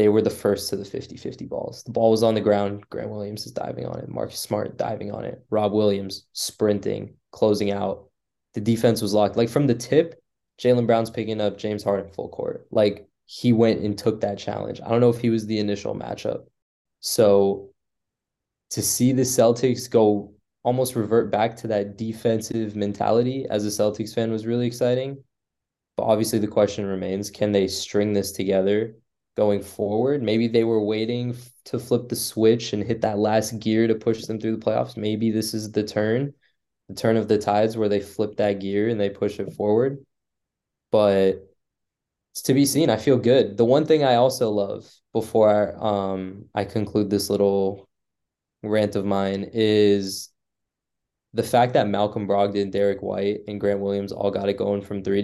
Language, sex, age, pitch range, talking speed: English, male, 20-39, 100-115 Hz, 190 wpm